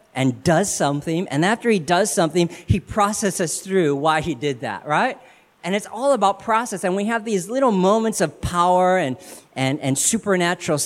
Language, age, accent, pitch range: English, 40-59, American, 135-185 Hz